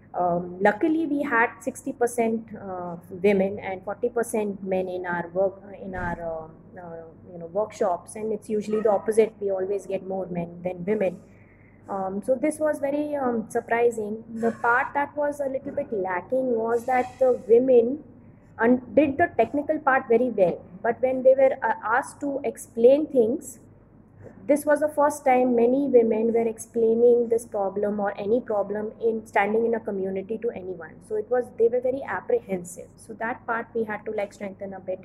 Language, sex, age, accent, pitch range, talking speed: English, female, 20-39, Indian, 195-255 Hz, 185 wpm